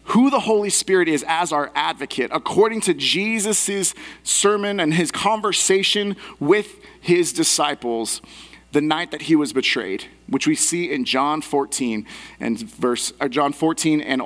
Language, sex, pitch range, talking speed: English, male, 150-215 Hz, 145 wpm